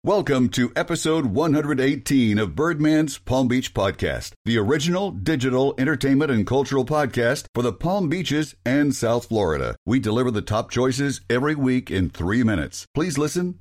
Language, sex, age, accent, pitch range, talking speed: English, male, 60-79, American, 115-155 Hz, 155 wpm